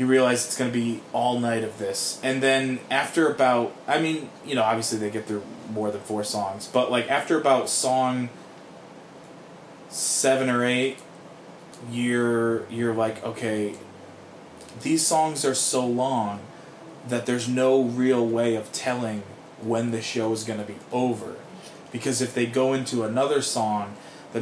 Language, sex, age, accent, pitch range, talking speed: English, male, 20-39, American, 115-160 Hz, 160 wpm